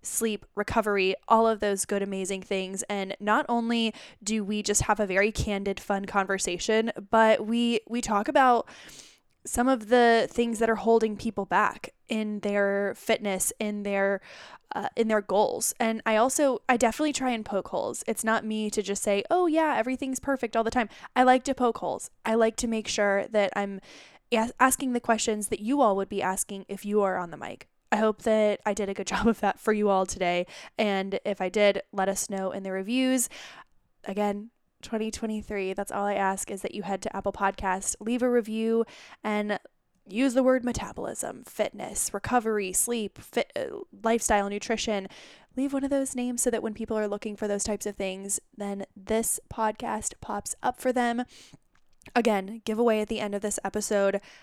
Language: English